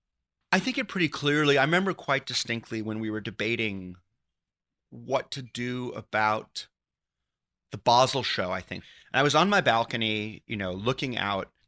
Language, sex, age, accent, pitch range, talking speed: English, male, 30-49, American, 100-130 Hz, 165 wpm